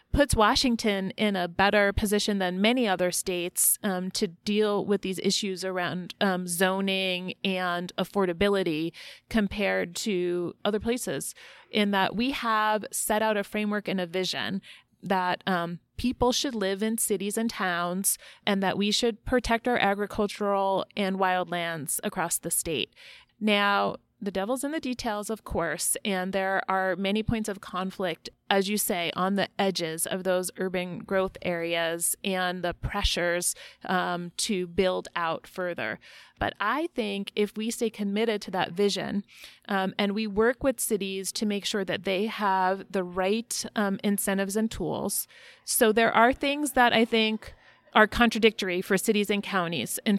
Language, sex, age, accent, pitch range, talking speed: English, female, 30-49, American, 185-220 Hz, 160 wpm